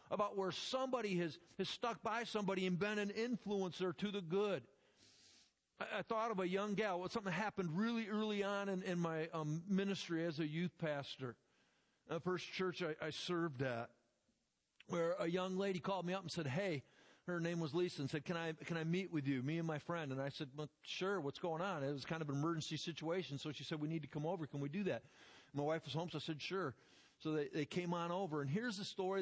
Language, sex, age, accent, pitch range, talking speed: English, male, 50-69, American, 155-190 Hz, 240 wpm